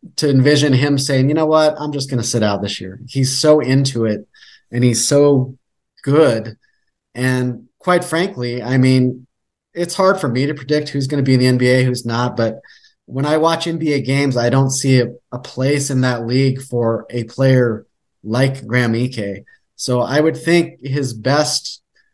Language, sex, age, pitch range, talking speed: English, male, 30-49, 120-145 Hz, 190 wpm